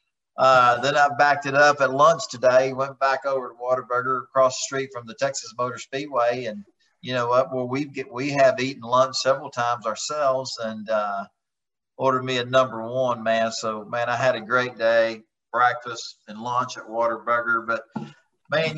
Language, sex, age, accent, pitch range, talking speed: English, male, 40-59, American, 120-145 Hz, 185 wpm